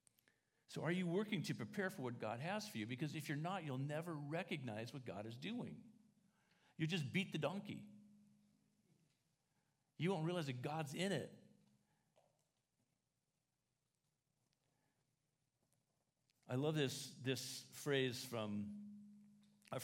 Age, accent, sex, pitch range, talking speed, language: 50-69, American, male, 110-155 Hz, 125 wpm, English